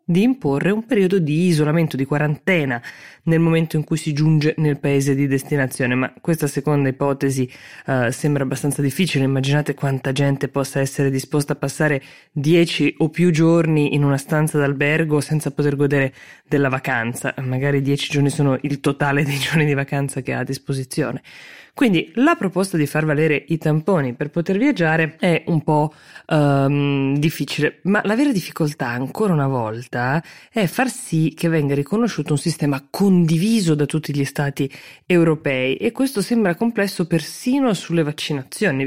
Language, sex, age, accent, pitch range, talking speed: Italian, female, 20-39, native, 140-165 Hz, 160 wpm